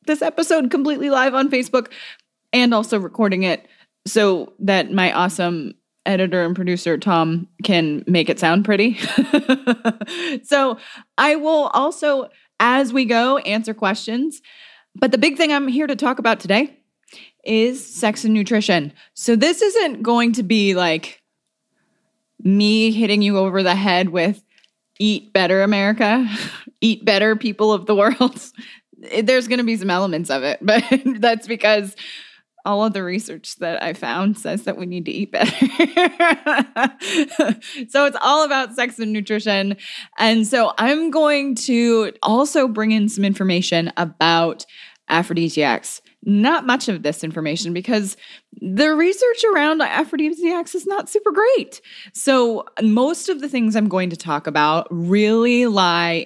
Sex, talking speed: female, 150 wpm